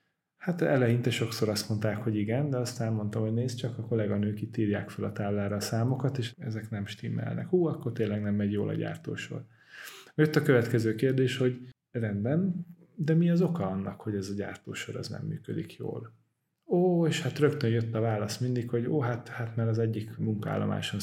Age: 30-49